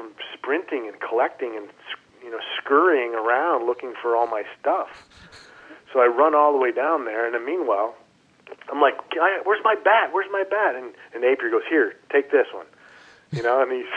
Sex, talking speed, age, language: male, 190 wpm, 40-59, English